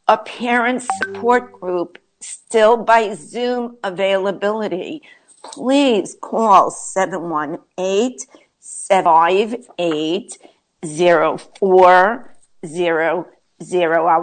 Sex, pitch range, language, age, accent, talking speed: female, 175-240 Hz, English, 50-69, American, 50 wpm